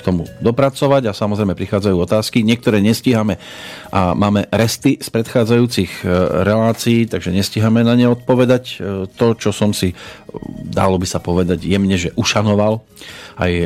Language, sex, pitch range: Slovak, male, 95-115 Hz